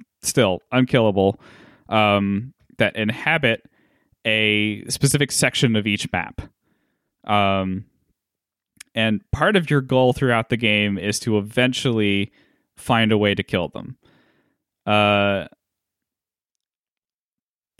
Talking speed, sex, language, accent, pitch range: 100 wpm, male, English, American, 105-125 Hz